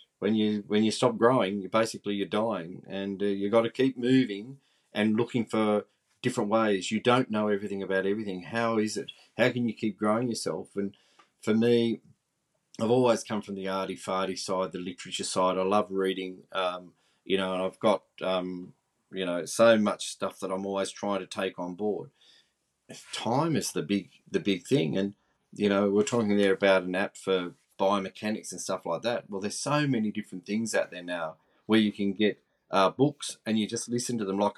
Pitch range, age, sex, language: 95-110 Hz, 30-49, male, English